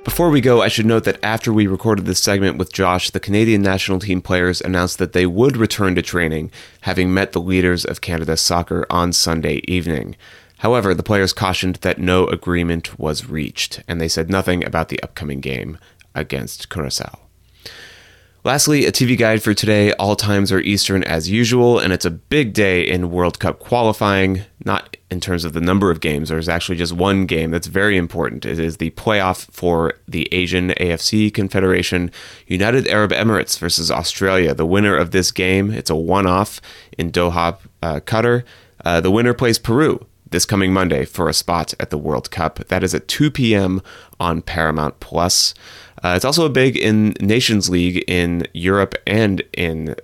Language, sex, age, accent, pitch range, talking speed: English, male, 30-49, American, 85-100 Hz, 185 wpm